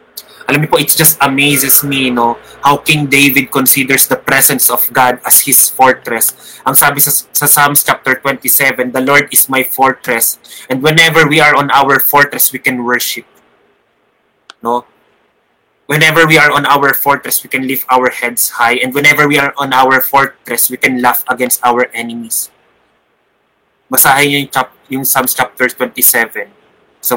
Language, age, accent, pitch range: Filipino, 20-39, native, 125-140 Hz